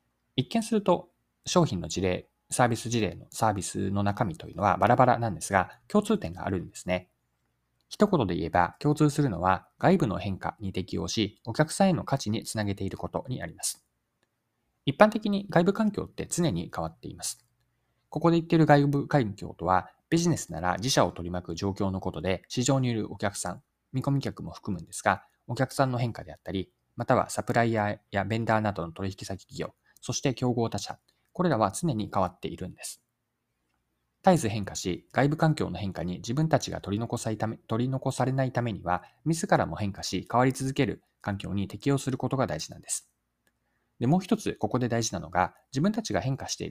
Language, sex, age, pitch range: Japanese, male, 20-39, 95-145 Hz